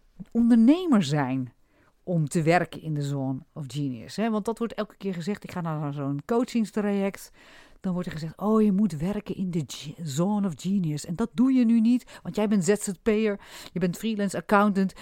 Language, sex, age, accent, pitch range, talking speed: Dutch, female, 50-69, Dutch, 160-235 Hz, 190 wpm